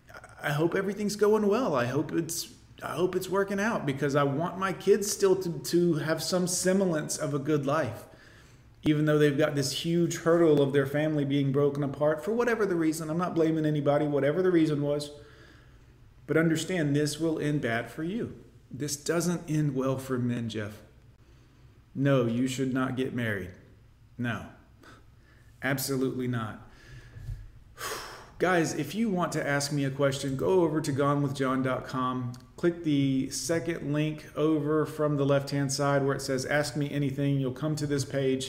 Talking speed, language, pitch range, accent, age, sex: 175 wpm, English, 130-160 Hz, American, 30-49, male